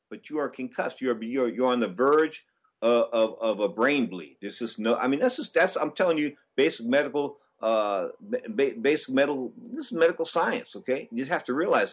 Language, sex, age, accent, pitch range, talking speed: English, male, 50-69, American, 115-160 Hz, 215 wpm